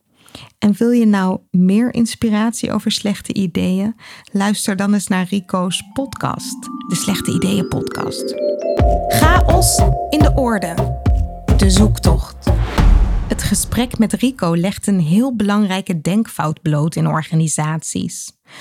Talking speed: 120 wpm